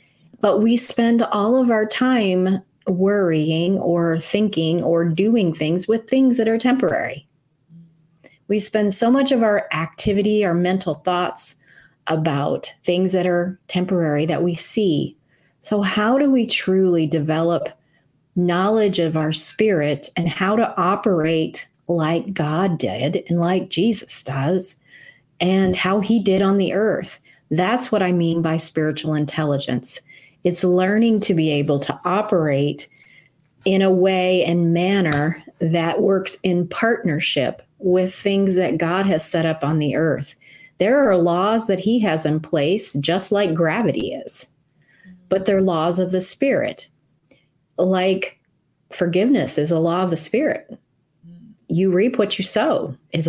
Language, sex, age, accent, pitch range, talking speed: English, female, 30-49, American, 160-205 Hz, 145 wpm